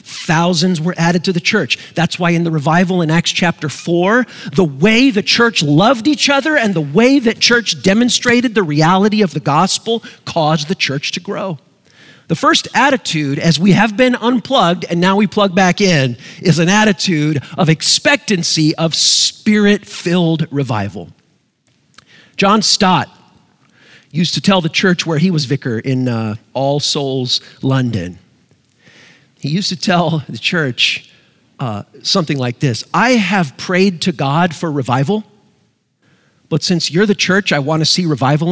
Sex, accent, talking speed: male, American, 160 wpm